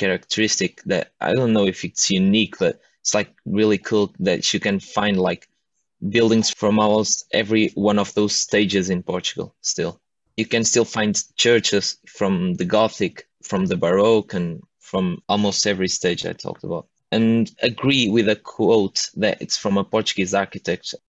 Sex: male